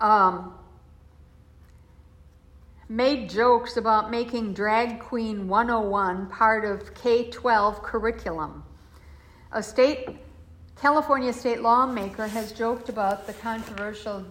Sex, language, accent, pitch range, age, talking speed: female, English, American, 195-245 Hz, 60-79, 90 wpm